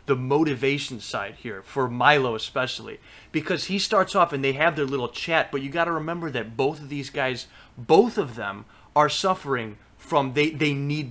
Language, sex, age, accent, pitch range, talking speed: English, male, 30-49, American, 130-165 Hz, 195 wpm